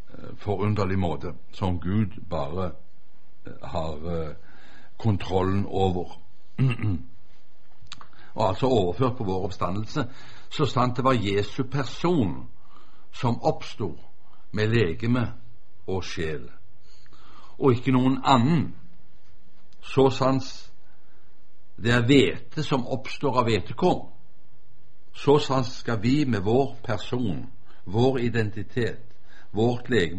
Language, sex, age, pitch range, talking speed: Danish, male, 60-79, 95-130 Hz, 105 wpm